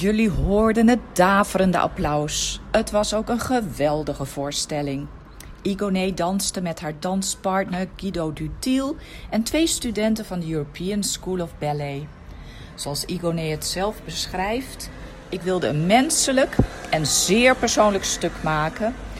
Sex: female